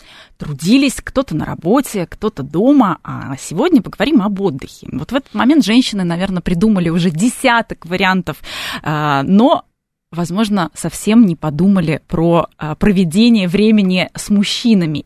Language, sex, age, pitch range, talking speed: Russian, female, 20-39, 165-225 Hz, 125 wpm